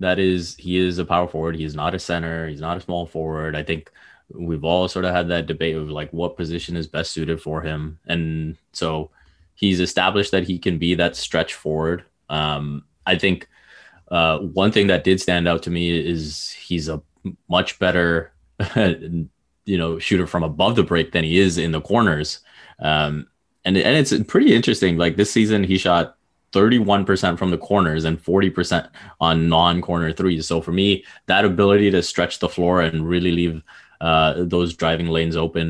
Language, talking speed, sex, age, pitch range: English, 190 wpm, male, 20-39, 80-95 Hz